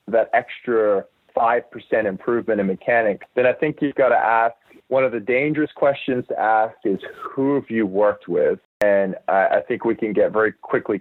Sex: male